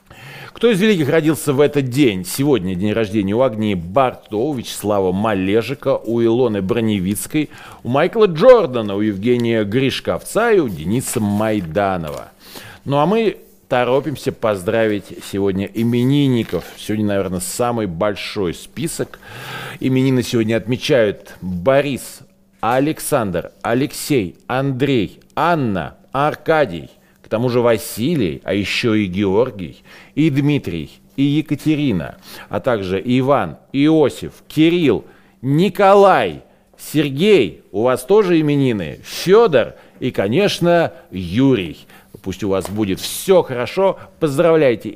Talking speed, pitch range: 110 wpm, 100-145 Hz